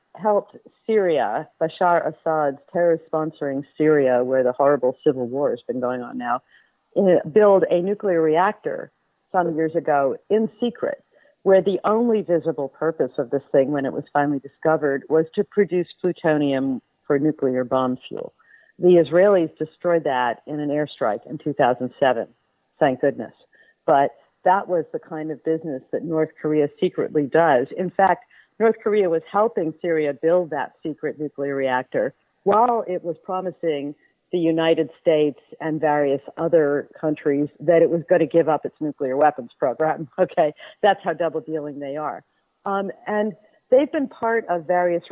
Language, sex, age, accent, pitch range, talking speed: English, female, 50-69, American, 145-175 Hz, 155 wpm